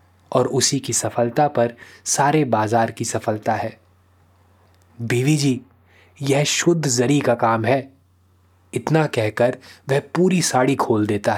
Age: 20-39